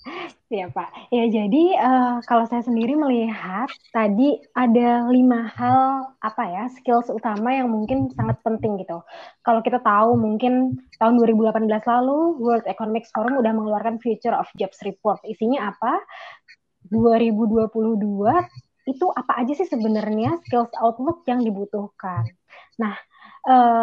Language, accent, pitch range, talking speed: Indonesian, native, 220-265 Hz, 130 wpm